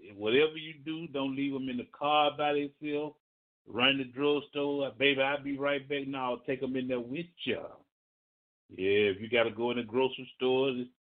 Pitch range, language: 120-155 Hz, English